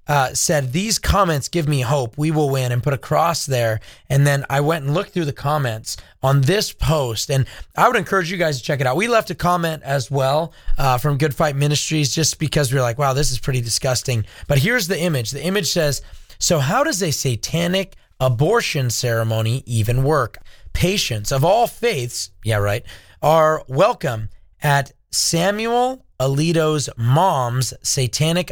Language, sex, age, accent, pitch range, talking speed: English, male, 30-49, American, 120-160 Hz, 180 wpm